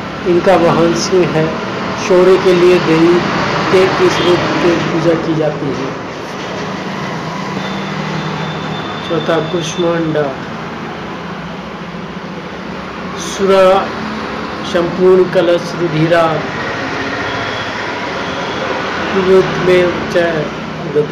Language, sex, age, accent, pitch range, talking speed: Hindi, male, 50-69, native, 165-185 Hz, 45 wpm